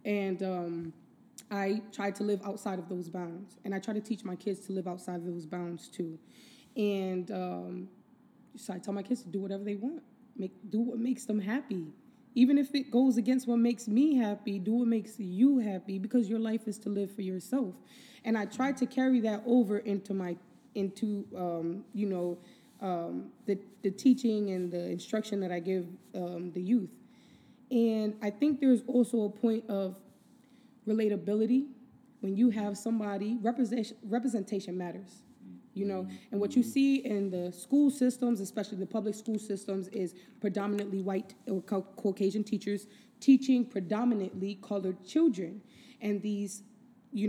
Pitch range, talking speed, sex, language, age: 195-240 Hz, 170 wpm, female, English, 20-39